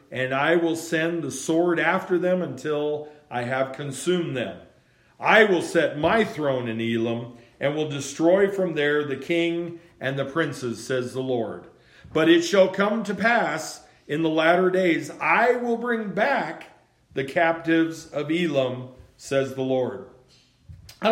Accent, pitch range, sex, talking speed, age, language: American, 130-165 Hz, male, 155 wpm, 40-59, English